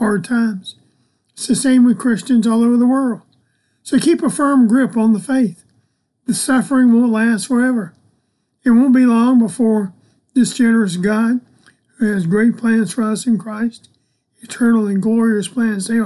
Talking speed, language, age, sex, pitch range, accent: 170 wpm, English, 50-69, male, 205-245 Hz, American